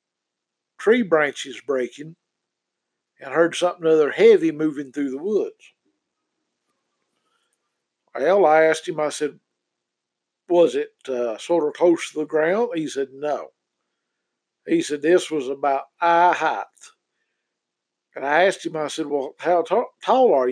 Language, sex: English, male